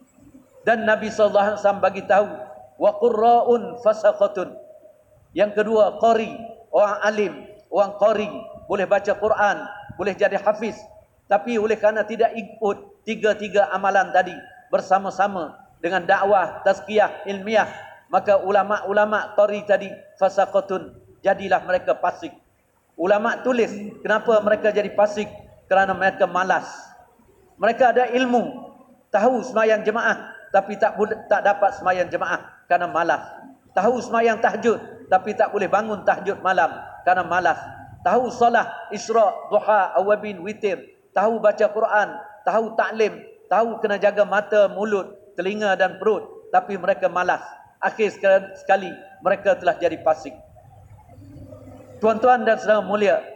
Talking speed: 125 wpm